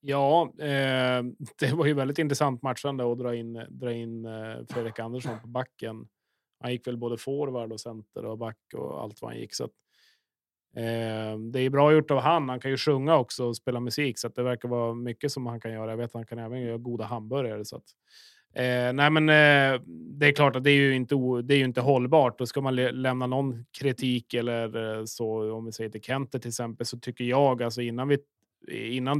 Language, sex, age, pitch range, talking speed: Swedish, male, 30-49, 115-135 Hz, 230 wpm